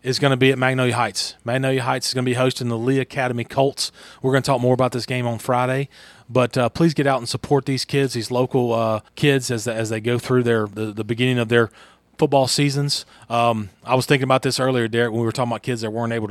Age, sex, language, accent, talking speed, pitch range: 30-49, male, English, American, 265 wpm, 115-135 Hz